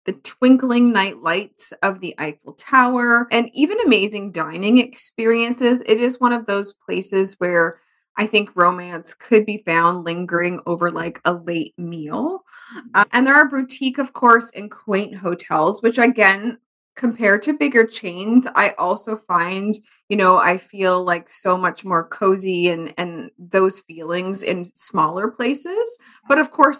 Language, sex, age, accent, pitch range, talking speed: English, female, 20-39, American, 180-235 Hz, 155 wpm